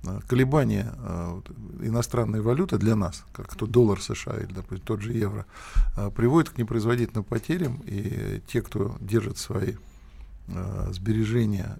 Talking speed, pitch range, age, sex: 135 wpm, 100-120 Hz, 50-69, male